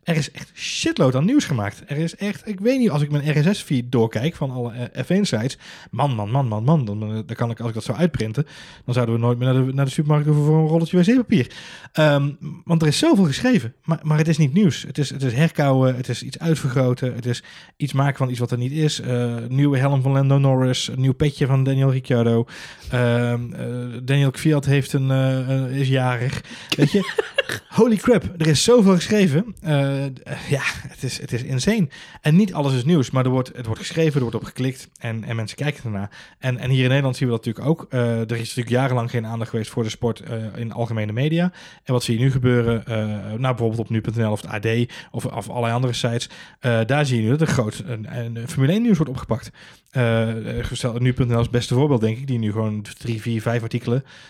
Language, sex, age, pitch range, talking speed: Dutch, male, 20-39, 120-150 Hz, 235 wpm